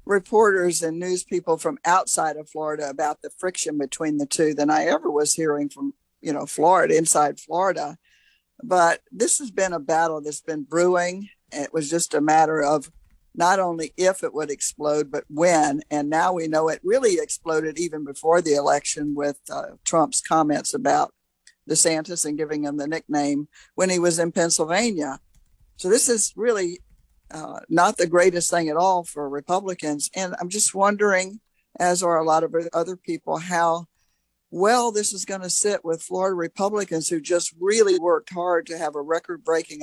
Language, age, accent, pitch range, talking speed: English, 50-69, American, 155-185 Hz, 180 wpm